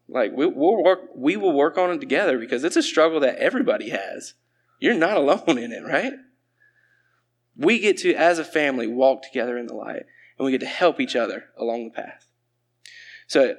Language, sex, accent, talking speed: English, male, American, 200 wpm